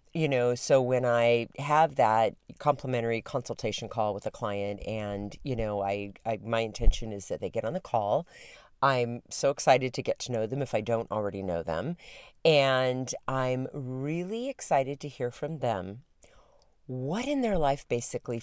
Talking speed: 175 wpm